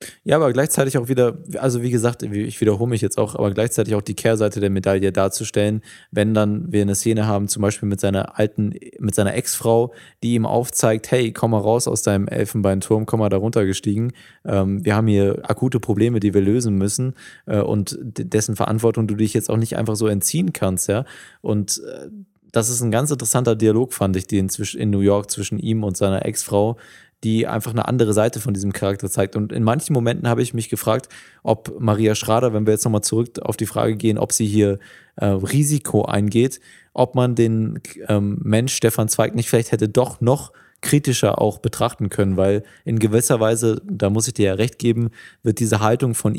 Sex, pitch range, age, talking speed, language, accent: male, 105-120 Hz, 20-39, 200 wpm, German, German